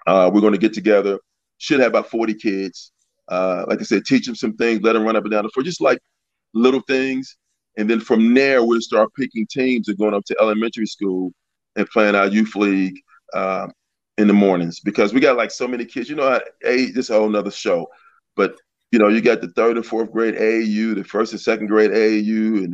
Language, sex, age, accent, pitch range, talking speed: English, male, 30-49, American, 105-115 Hz, 225 wpm